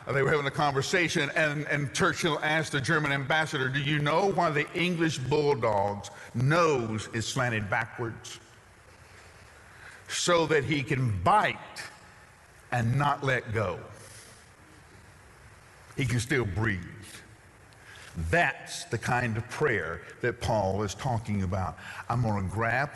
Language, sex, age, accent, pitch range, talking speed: English, male, 60-79, American, 100-140 Hz, 130 wpm